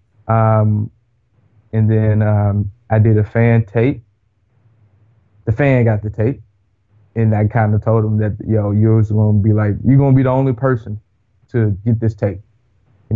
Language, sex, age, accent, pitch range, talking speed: English, male, 20-39, American, 105-120 Hz, 185 wpm